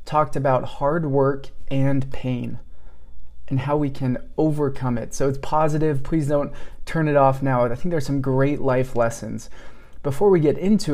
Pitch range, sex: 125-150 Hz, male